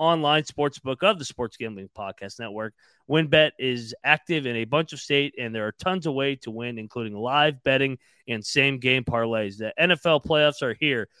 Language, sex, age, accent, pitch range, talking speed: English, male, 30-49, American, 115-150 Hz, 195 wpm